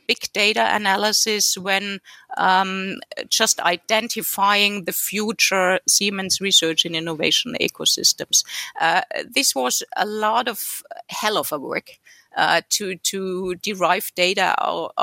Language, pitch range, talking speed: English, 180-225 Hz, 120 wpm